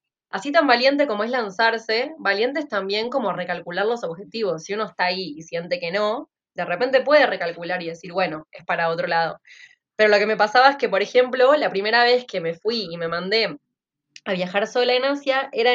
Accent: Argentinian